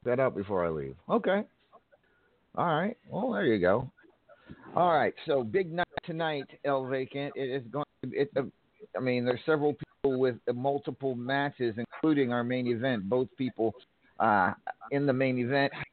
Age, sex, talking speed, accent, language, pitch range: 50-69, male, 175 wpm, American, English, 105-135 Hz